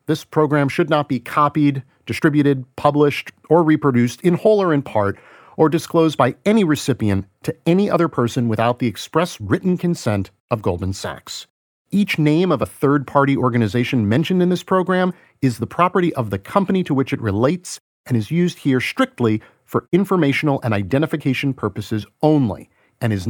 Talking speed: 165 wpm